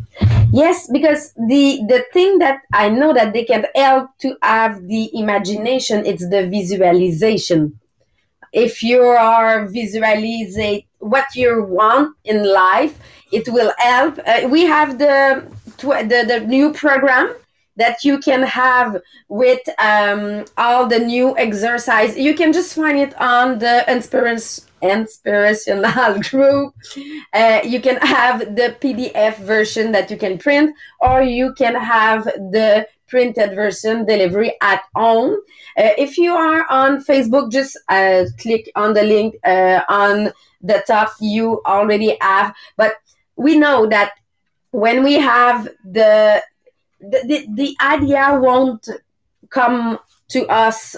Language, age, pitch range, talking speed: English, 30-49, 215-270 Hz, 135 wpm